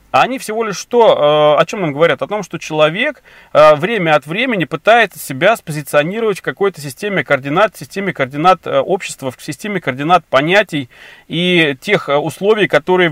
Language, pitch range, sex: Russian, 150-195 Hz, male